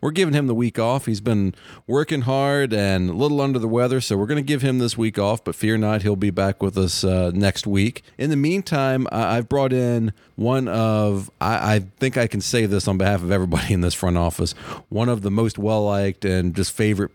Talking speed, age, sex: 240 wpm, 40-59, male